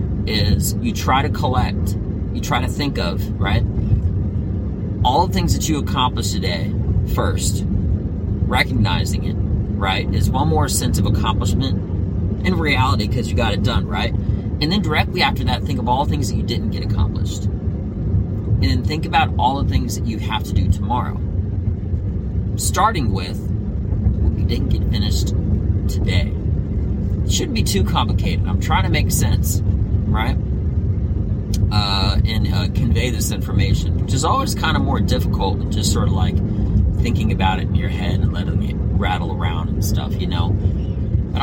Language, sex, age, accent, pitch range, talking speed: English, male, 40-59, American, 95-100 Hz, 170 wpm